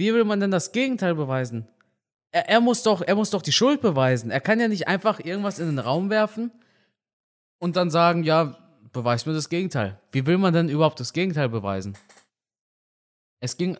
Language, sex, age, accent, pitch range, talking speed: German, male, 20-39, German, 120-160 Hz, 195 wpm